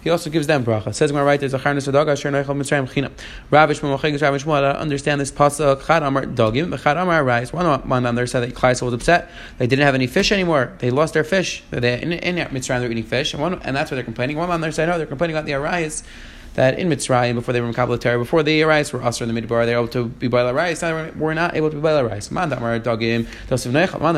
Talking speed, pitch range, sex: 265 wpm, 130-165 Hz, male